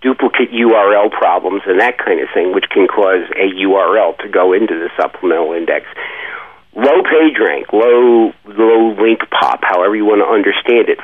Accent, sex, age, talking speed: American, male, 50-69, 175 wpm